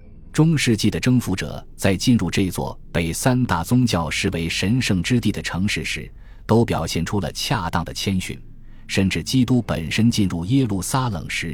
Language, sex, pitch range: Chinese, male, 85-115 Hz